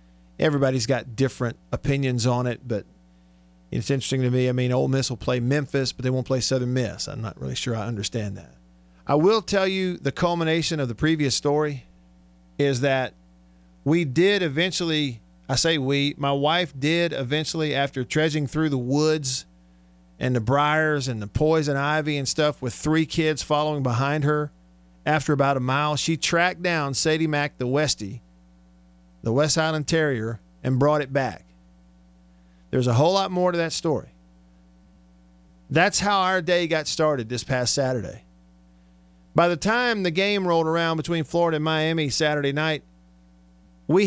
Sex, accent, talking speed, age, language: male, American, 165 wpm, 50-69, English